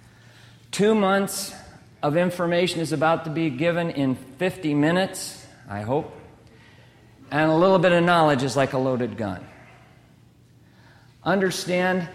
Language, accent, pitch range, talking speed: English, American, 130-170 Hz, 130 wpm